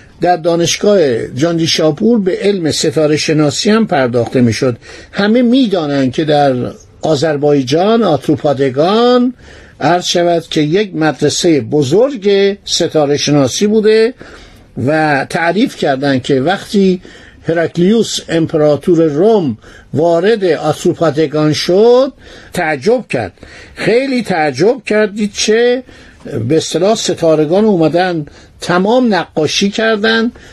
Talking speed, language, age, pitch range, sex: 100 wpm, Persian, 60-79, 155-215 Hz, male